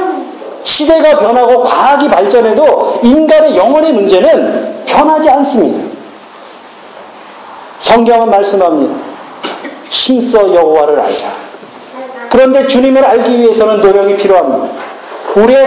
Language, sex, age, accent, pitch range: Korean, male, 40-59, native, 180-280 Hz